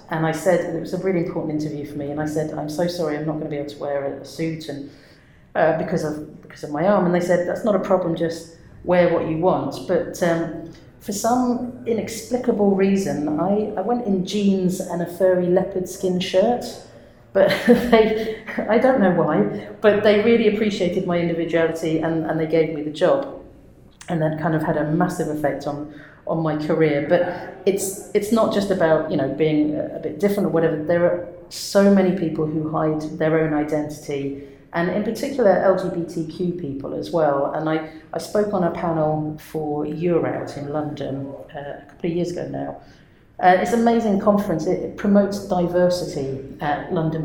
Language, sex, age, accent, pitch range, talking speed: English, female, 40-59, British, 155-185 Hz, 200 wpm